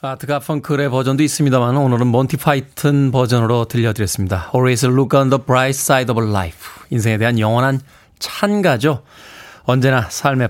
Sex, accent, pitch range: male, native, 120-170 Hz